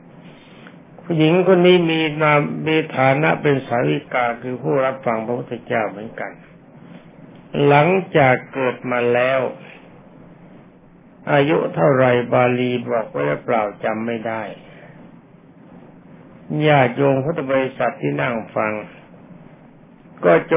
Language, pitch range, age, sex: Thai, 125-155 Hz, 60-79, male